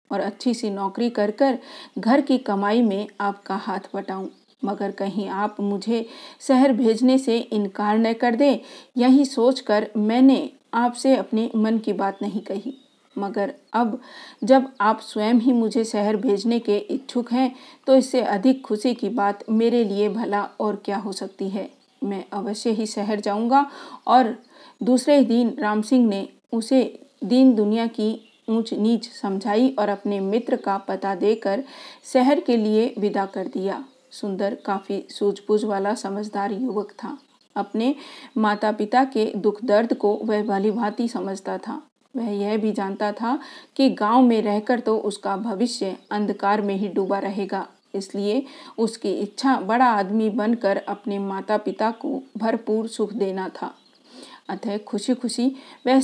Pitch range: 205-255 Hz